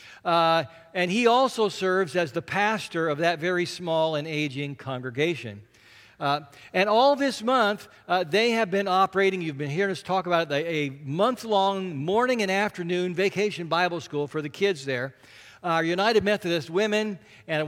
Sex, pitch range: male, 150-200 Hz